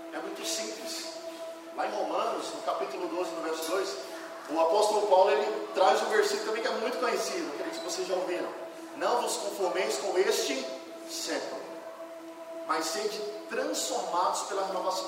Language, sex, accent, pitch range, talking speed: Portuguese, male, Brazilian, 200-330 Hz, 165 wpm